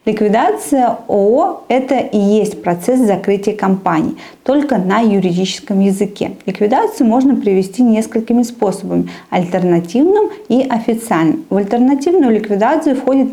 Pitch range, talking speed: 195-250 Hz, 115 wpm